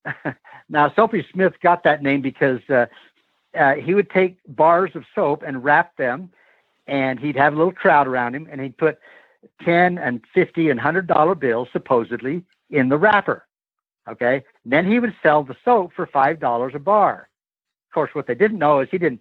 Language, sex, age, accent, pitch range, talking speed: English, male, 60-79, American, 130-170 Hz, 185 wpm